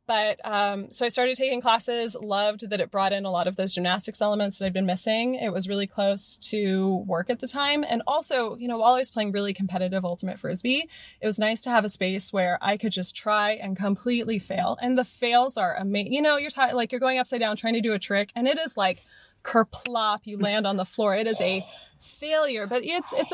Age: 20-39